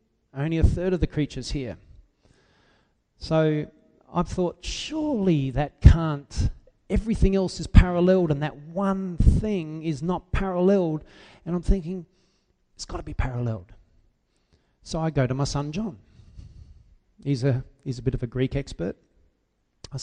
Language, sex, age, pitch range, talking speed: English, male, 40-59, 125-165 Hz, 145 wpm